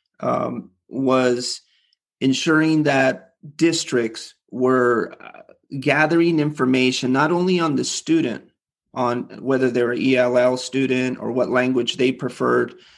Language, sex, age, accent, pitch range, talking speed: English, male, 30-49, American, 125-145 Hz, 110 wpm